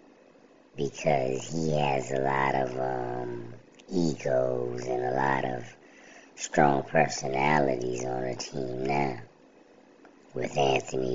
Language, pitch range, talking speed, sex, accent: English, 65-75 Hz, 110 wpm, male, American